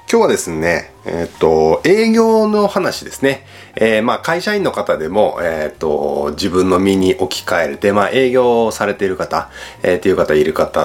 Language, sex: Japanese, male